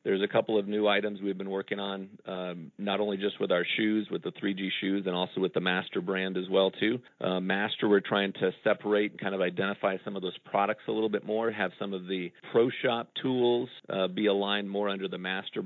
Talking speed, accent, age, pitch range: 240 wpm, American, 40-59, 95-105 Hz